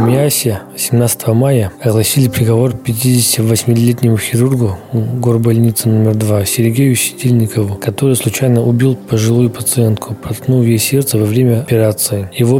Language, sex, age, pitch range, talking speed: Russian, male, 20-39, 115-130 Hz, 120 wpm